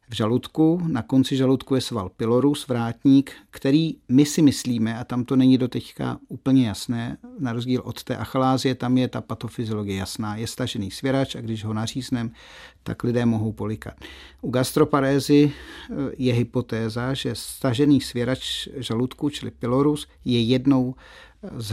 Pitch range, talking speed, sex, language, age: 115-135 Hz, 150 wpm, male, Czech, 50-69